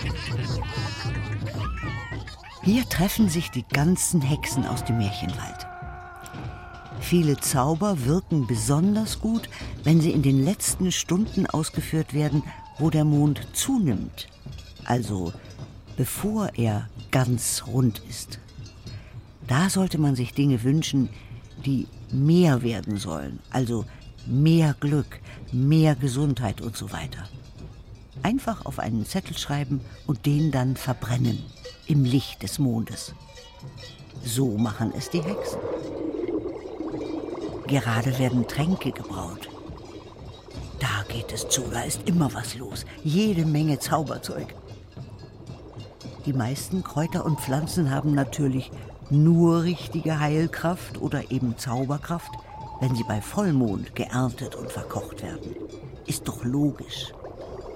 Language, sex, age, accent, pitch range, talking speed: German, female, 50-69, German, 115-155 Hz, 110 wpm